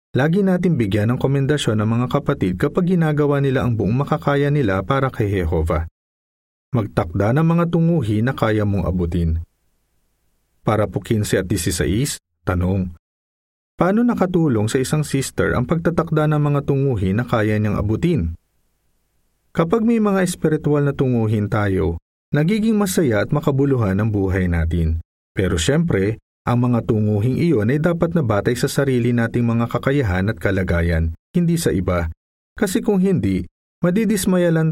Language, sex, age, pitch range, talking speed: Filipino, male, 40-59, 90-150 Hz, 145 wpm